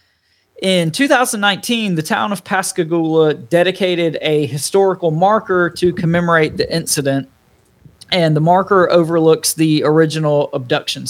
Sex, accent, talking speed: male, American, 115 wpm